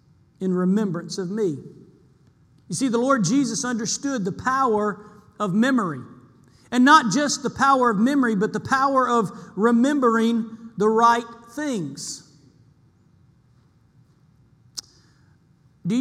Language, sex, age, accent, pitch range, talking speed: English, male, 50-69, American, 185-245 Hz, 110 wpm